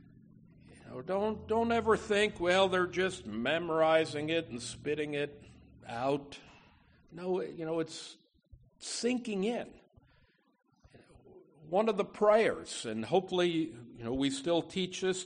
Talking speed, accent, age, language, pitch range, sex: 120 wpm, American, 60-79, English, 140-215 Hz, male